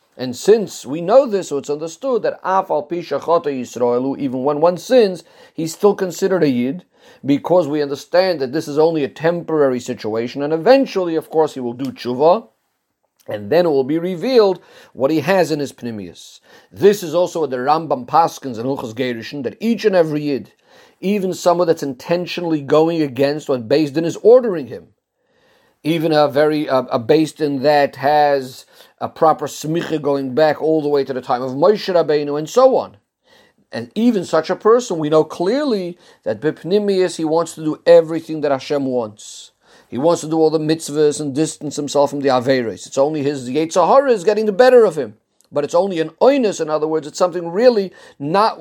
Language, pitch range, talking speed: English, 140-175 Hz, 190 wpm